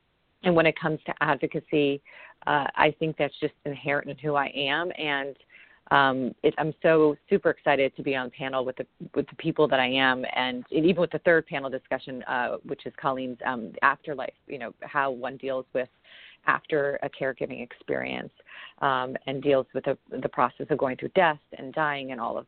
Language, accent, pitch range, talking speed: English, American, 135-160 Hz, 200 wpm